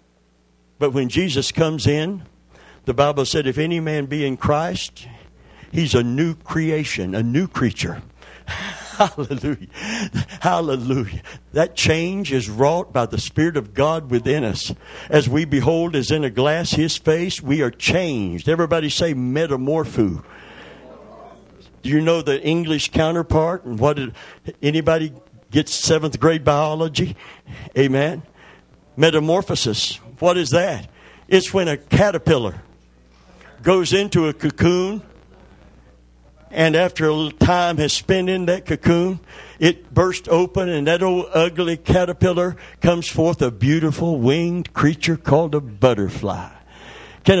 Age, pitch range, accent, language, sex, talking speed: 60-79, 135-180 Hz, American, English, male, 130 wpm